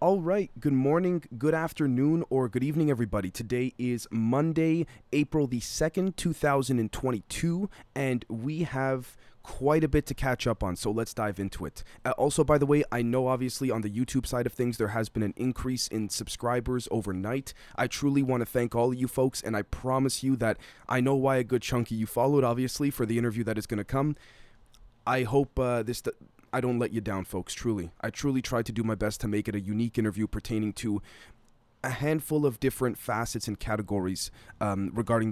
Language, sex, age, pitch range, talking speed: English, male, 20-39, 105-130 Hz, 200 wpm